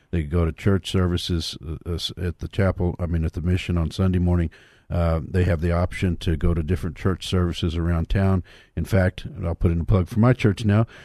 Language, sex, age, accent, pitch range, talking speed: English, male, 50-69, American, 85-100 Hz, 215 wpm